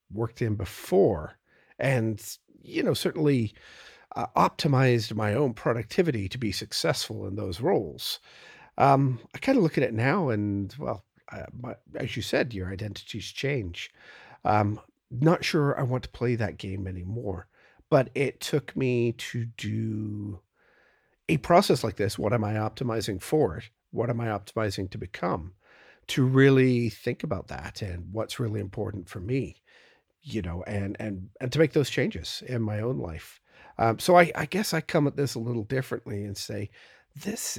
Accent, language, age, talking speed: American, English, 50-69, 170 wpm